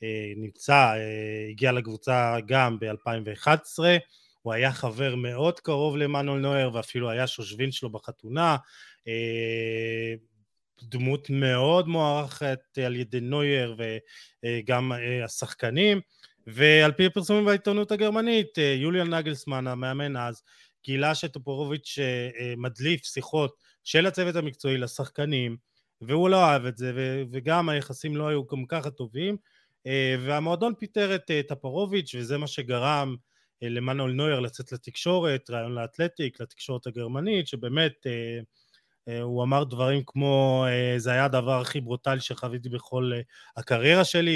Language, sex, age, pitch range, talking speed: Hebrew, male, 20-39, 120-150 Hz, 110 wpm